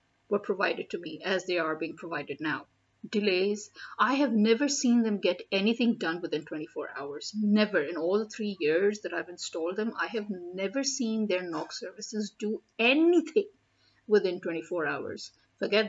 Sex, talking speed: female, 170 wpm